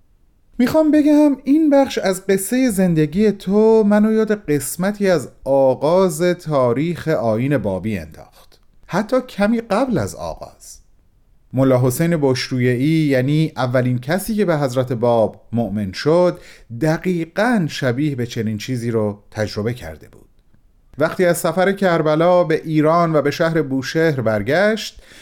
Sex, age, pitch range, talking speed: male, 40-59, 120-195 Hz, 125 wpm